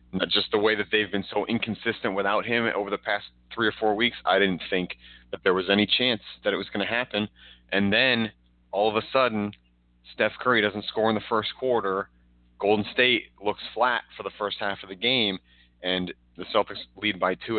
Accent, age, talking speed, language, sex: American, 30-49, 210 wpm, English, male